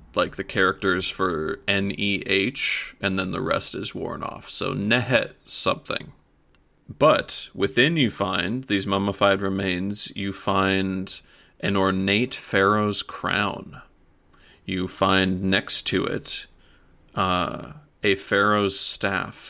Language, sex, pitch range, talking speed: English, male, 95-100 Hz, 115 wpm